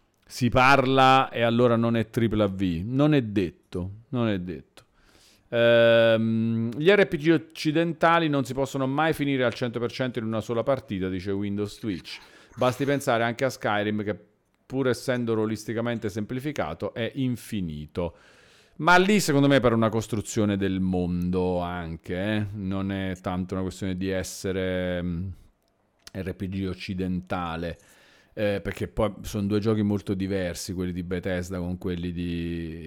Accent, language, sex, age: native, Italian, male, 40-59